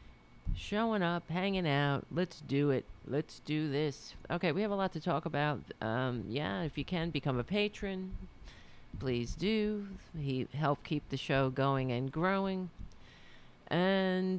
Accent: American